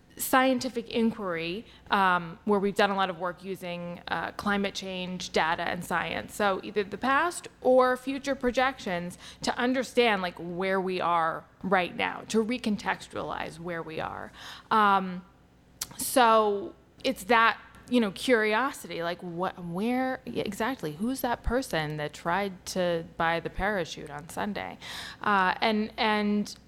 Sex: female